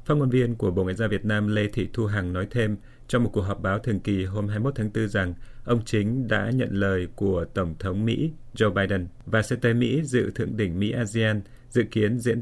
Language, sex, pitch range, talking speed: Vietnamese, male, 100-120 Hz, 235 wpm